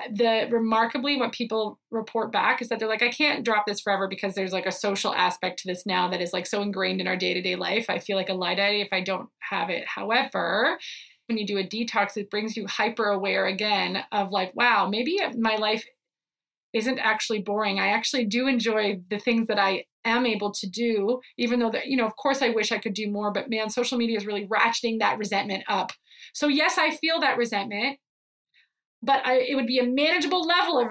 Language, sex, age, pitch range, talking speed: English, female, 30-49, 205-250 Hz, 220 wpm